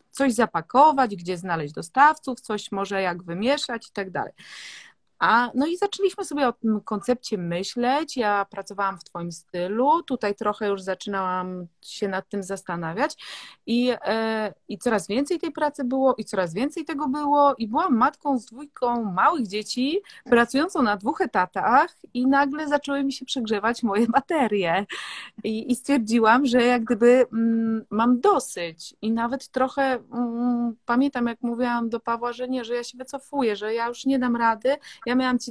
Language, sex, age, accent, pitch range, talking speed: Polish, female, 30-49, native, 205-275 Hz, 165 wpm